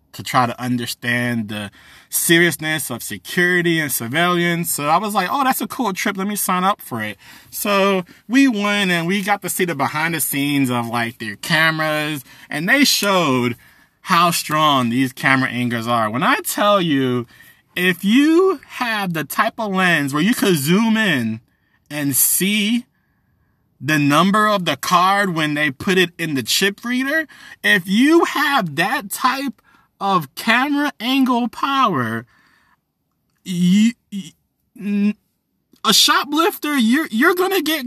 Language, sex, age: English, male, 20-39